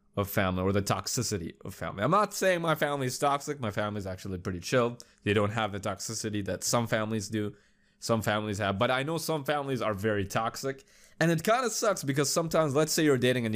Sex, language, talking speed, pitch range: male, English, 230 wpm, 105-140 Hz